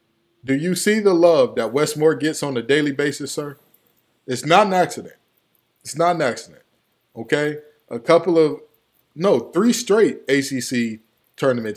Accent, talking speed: American, 155 wpm